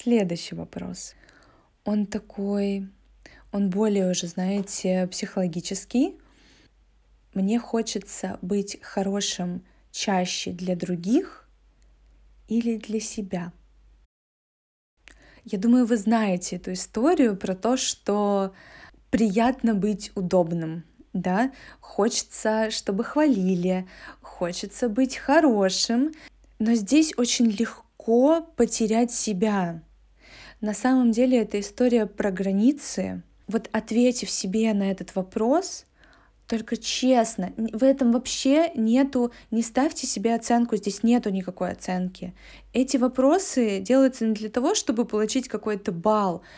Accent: native